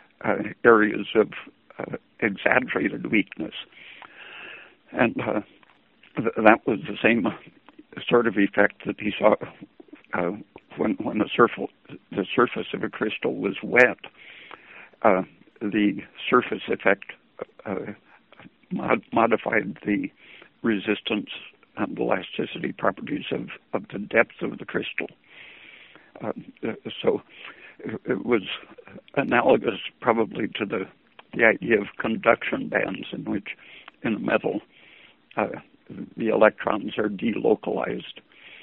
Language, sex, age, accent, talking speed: English, male, 60-79, American, 105 wpm